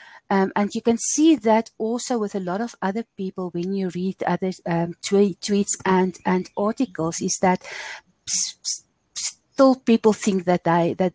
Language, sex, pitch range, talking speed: English, female, 185-225 Hz, 185 wpm